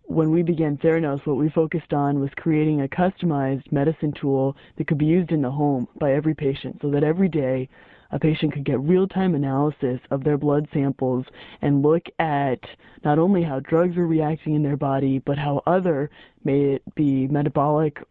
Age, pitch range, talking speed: 20-39, 140-165 Hz, 190 wpm